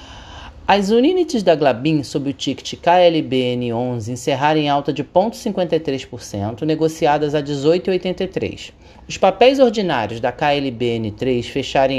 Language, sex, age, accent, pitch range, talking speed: Portuguese, male, 30-49, Brazilian, 125-180 Hz, 110 wpm